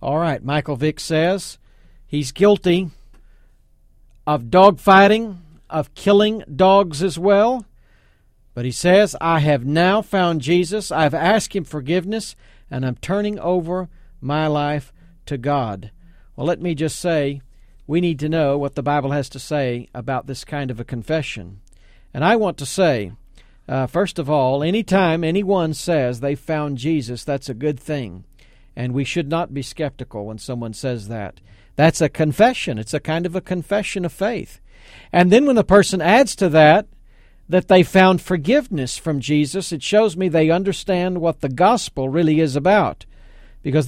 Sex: male